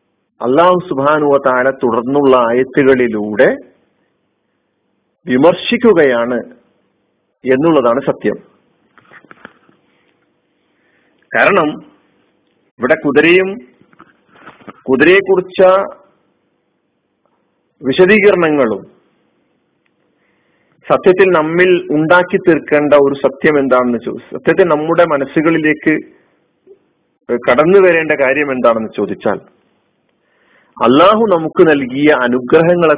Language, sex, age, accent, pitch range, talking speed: Malayalam, male, 50-69, native, 145-195 Hz, 60 wpm